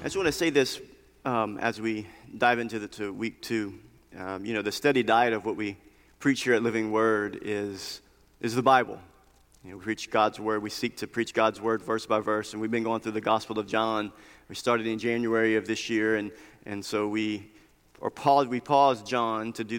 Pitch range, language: 110-125 Hz, English